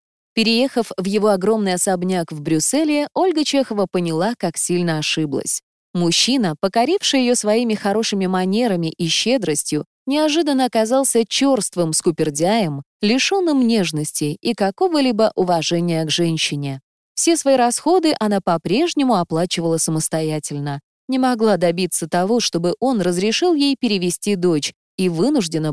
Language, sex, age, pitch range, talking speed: Russian, female, 20-39, 170-260 Hz, 120 wpm